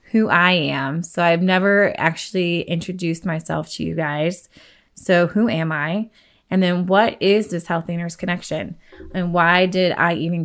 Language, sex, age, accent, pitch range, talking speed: English, female, 20-39, American, 170-195 Hz, 165 wpm